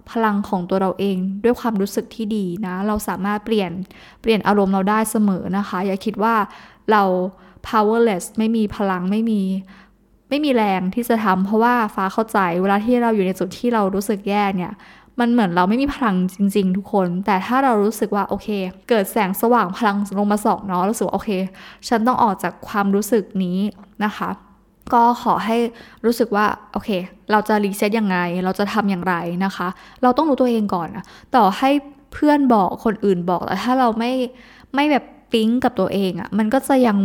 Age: 10-29